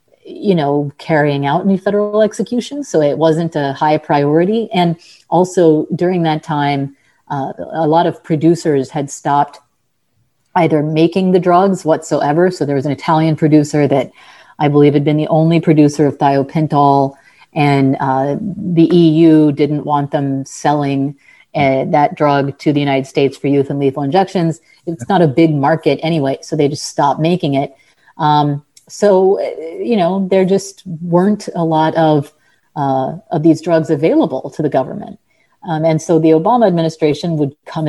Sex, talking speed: female, 165 wpm